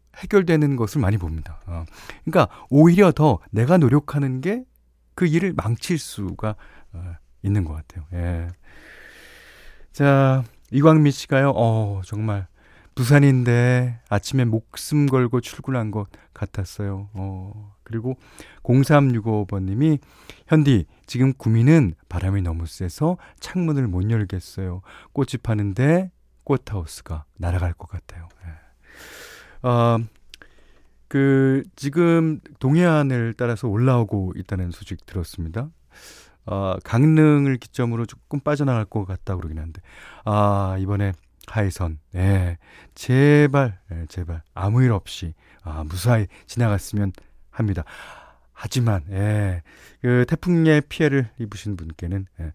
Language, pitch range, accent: Korean, 90-140 Hz, native